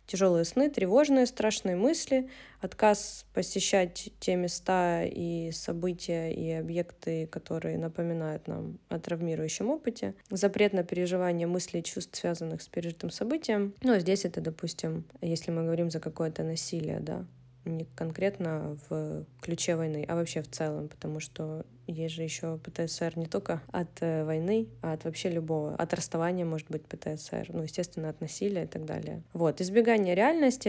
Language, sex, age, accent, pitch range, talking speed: Russian, female, 20-39, native, 165-200 Hz, 155 wpm